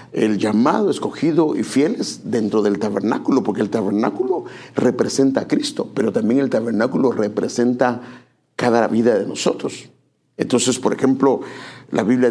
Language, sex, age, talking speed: English, male, 50-69, 135 wpm